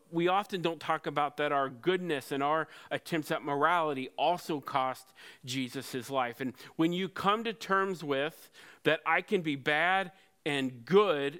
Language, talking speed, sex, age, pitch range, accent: English, 170 wpm, male, 40-59, 140-185 Hz, American